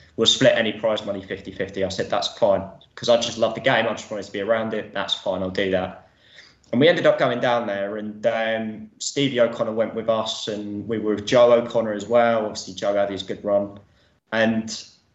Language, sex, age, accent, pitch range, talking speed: English, male, 20-39, British, 110-125 Hz, 225 wpm